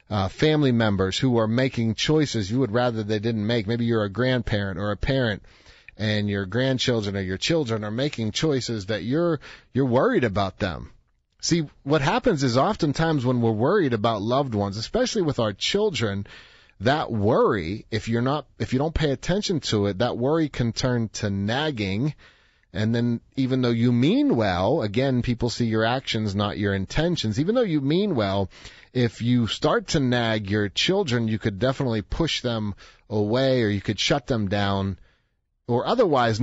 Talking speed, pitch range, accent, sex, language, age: 180 wpm, 105-140 Hz, American, male, English, 40-59